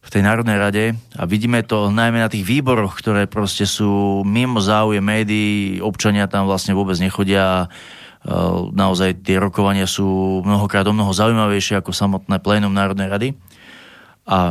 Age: 30-49